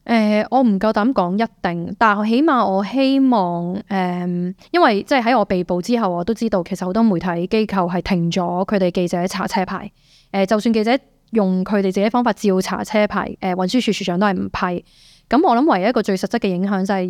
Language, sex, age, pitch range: Chinese, female, 20-39, 185-225 Hz